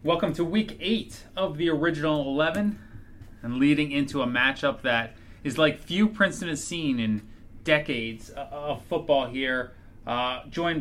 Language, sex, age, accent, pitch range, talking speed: English, male, 30-49, American, 120-155 Hz, 150 wpm